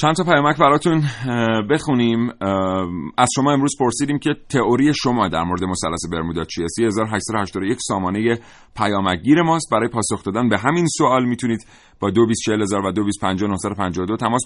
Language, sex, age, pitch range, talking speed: Persian, male, 30-49, 95-130 Hz, 135 wpm